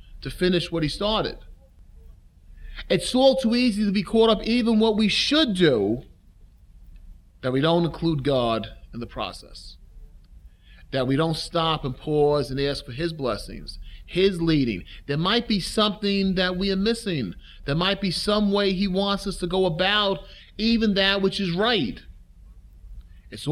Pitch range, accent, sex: 125-200 Hz, American, male